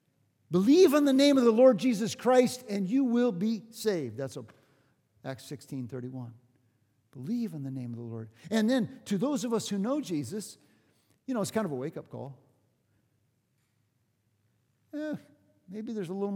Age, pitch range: 50-69, 135-205 Hz